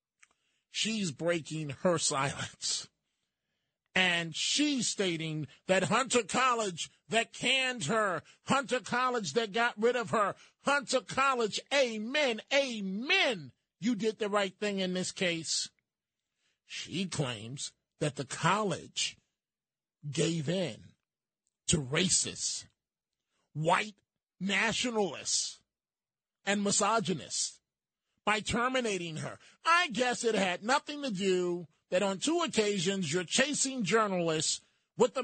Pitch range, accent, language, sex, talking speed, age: 180-245 Hz, American, English, male, 110 wpm, 40-59